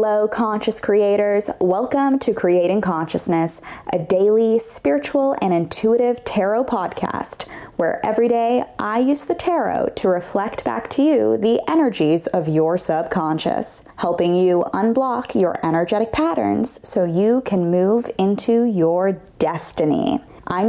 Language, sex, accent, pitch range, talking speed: English, female, American, 180-255 Hz, 130 wpm